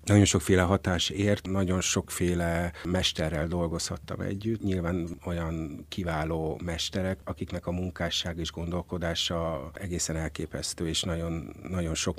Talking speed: 120 wpm